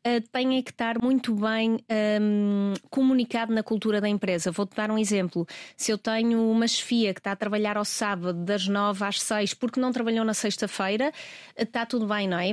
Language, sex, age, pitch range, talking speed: Portuguese, female, 20-39, 205-235 Hz, 190 wpm